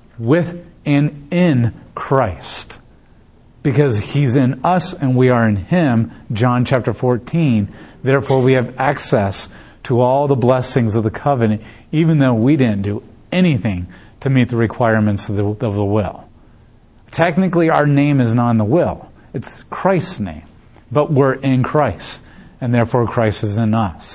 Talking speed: 155 wpm